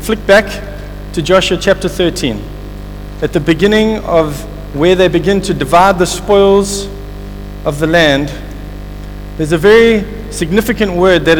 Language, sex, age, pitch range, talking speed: English, male, 50-69, 135-195 Hz, 135 wpm